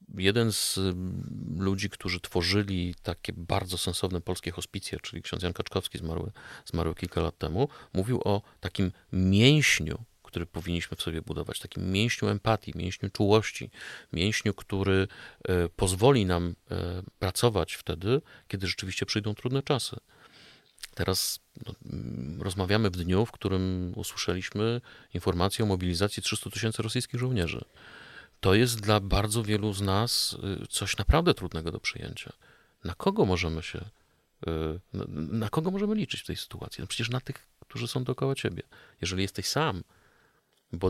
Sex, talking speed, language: male, 135 wpm, Polish